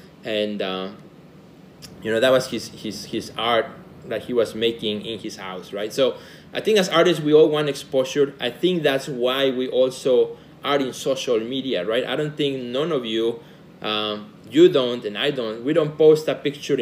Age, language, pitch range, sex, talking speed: 30-49, English, 120-155 Hz, male, 195 wpm